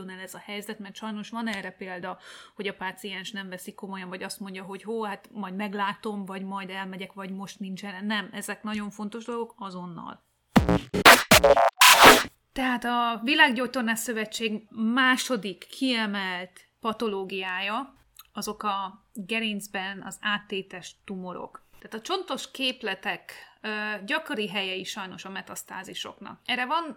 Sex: female